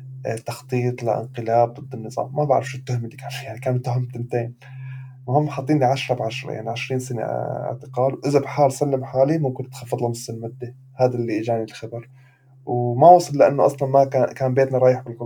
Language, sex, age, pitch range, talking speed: Arabic, male, 20-39, 120-130 Hz, 175 wpm